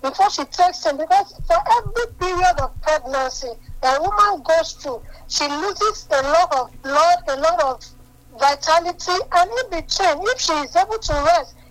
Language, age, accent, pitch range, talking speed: English, 50-69, American, 290-370 Hz, 175 wpm